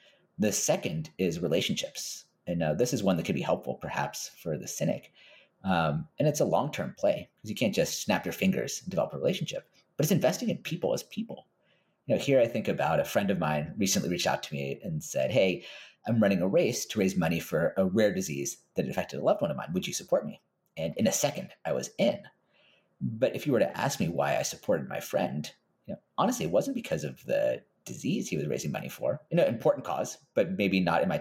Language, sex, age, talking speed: English, male, 40-59, 240 wpm